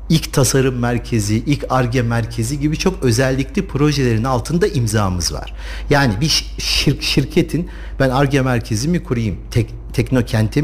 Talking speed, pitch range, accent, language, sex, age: 135 wpm, 110-155 Hz, native, Turkish, male, 50-69